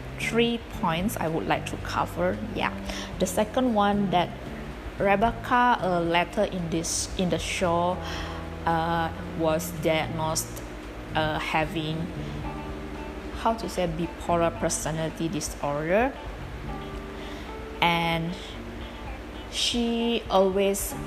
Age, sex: 20-39, female